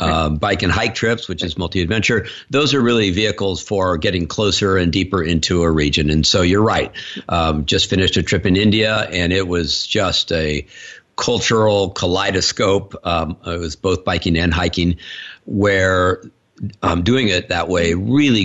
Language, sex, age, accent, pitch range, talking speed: English, male, 50-69, American, 85-105 Hz, 170 wpm